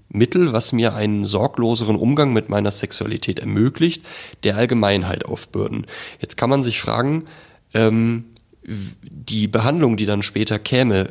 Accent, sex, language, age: German, male, German, 30-49